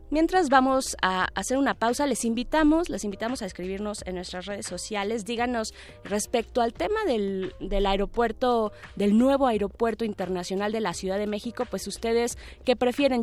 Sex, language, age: female, Spanish, 20-39